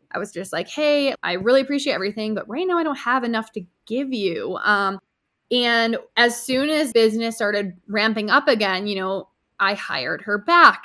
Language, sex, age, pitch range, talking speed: English, female, 20-39, 195-240 Hz, 195 wpm